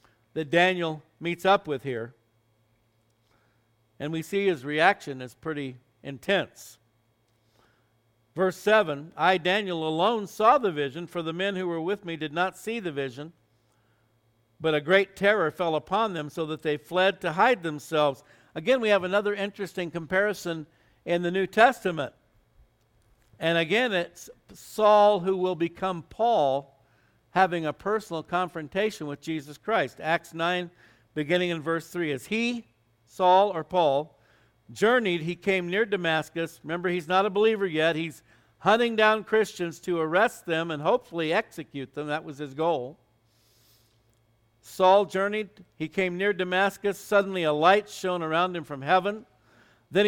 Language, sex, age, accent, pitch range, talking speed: English, male, 60-79, American, 140-190 Hz, 150 wpm